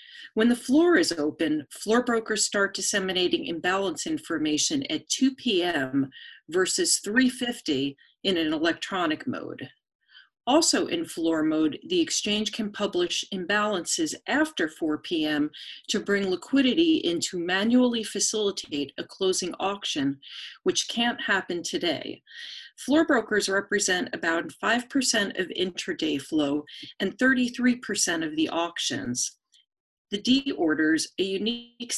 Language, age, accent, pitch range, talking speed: English, 40-59, American, 180-295 Hz, 120 wpm